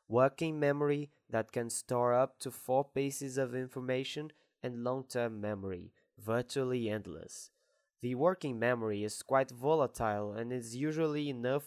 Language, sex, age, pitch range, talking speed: English, male, 20-39, 120-140 Hz, 135 wpm